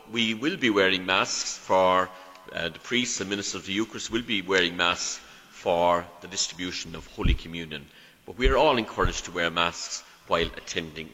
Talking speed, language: 185 wpm, English